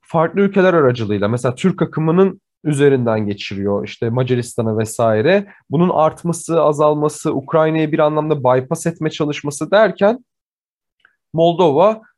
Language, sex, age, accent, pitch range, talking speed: Turkish, male, 40-59, native, 130-195 Hz, 110 wpm